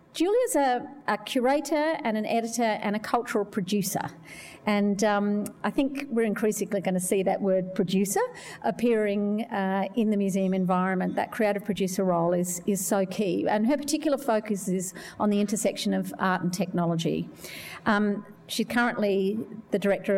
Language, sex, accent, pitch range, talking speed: English, female, Australian, 185-220 Hz, 160 wpm